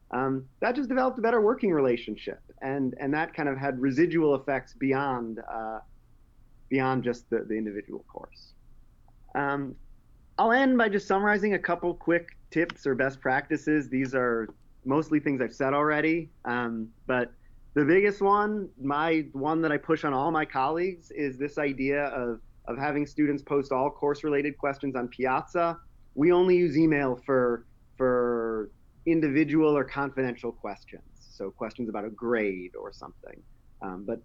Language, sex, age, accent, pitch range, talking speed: English, male, 30-49, American, 125-160 Hz, 160 wpm